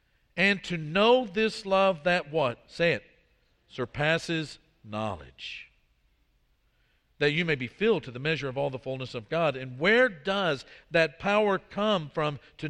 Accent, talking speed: American, 155 wpm